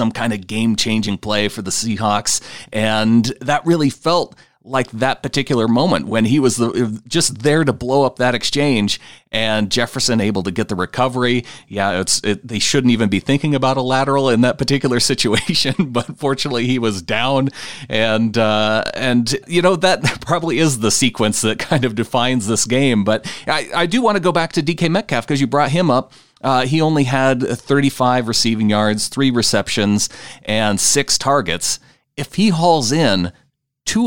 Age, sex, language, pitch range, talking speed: 40-59, male, English, 110-140 Hz, 185 wpm